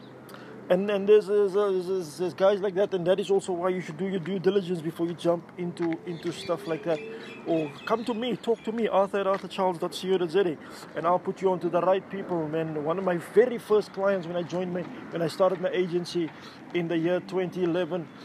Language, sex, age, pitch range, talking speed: English, male, 20-39, 160-190 Hz, 220 wpm